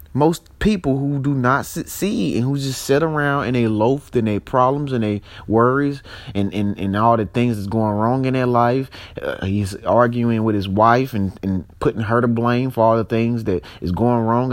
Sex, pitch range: male, 105-140 Hz